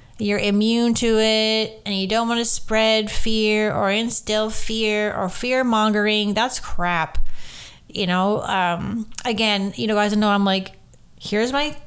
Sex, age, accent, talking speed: female, 30-49, American, 160 wpm